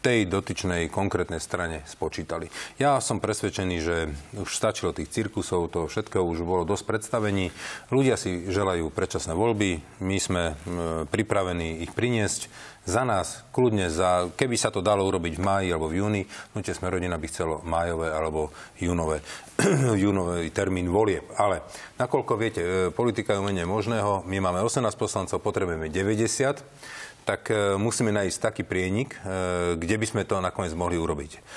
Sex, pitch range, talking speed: male, 85-110 Hz, 150 wpm